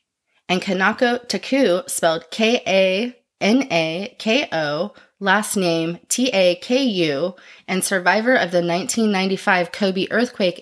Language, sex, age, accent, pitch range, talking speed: English, female, 30-49, American, 175-240 Hz, 85 wpm